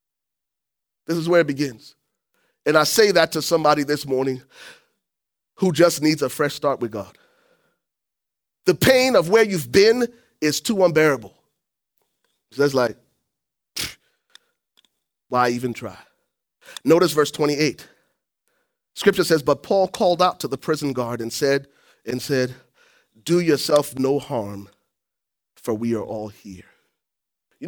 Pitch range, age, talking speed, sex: 125-190 Hz, 30-49, 140 wpm, male